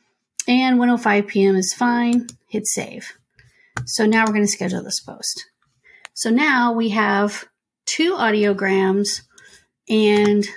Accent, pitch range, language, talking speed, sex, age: American, 200-245 Hz, English, 125 wpm, female, 30-49